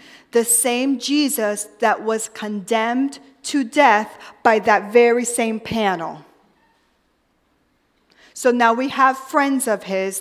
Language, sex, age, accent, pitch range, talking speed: English, female, 40-59, American, 215-280 Hz, 120 wpm